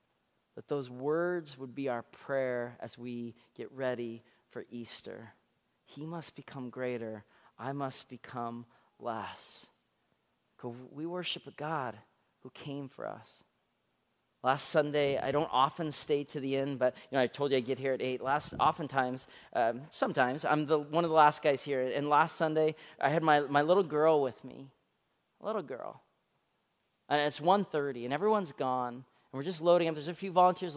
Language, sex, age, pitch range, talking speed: English, male, 30-49, 125-160 Hz, 175 wpm